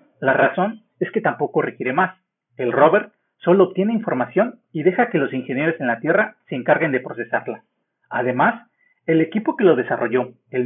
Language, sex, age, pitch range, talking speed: Spanish, male, 40-59, 150-245 Hz, 175 wpm